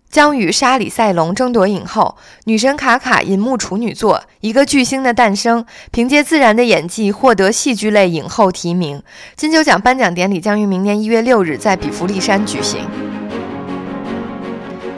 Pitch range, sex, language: 195-255 Hz, female, Chinese